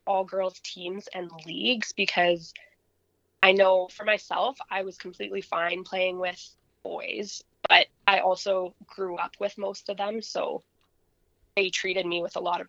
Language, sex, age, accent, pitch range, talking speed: English, female, 20-39, American, 175-200 Hz, 155 wpm